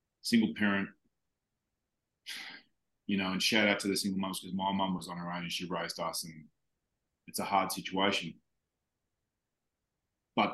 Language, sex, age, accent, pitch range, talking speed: English, male, 30-49, Australian, 90-100 Hz, 160 wpm